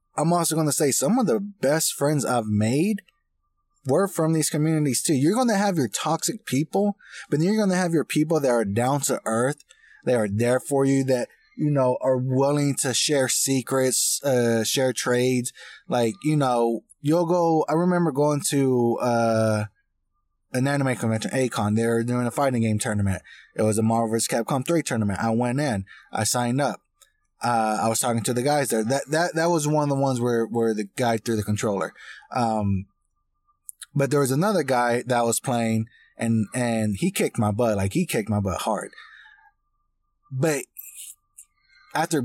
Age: 20-39